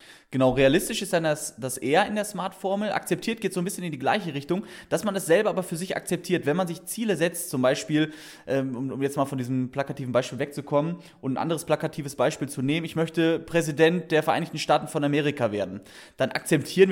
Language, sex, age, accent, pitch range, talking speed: German, male, 20-39, German, 130-175 Hz, 215 wpm